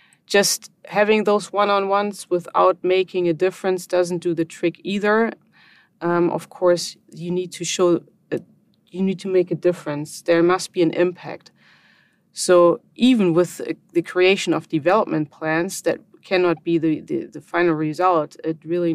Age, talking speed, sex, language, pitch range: 30-49, 160 wpm, female, English, 165-185 Hz